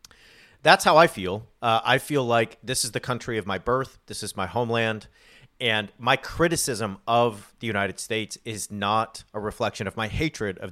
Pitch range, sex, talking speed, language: 105-125 Hz, male, 190 wpm, English